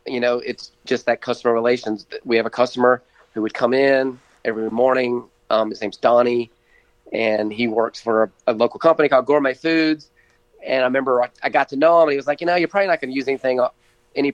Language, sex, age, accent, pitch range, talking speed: English, male, 30-49, American, 120-140 Hz, 225 wpm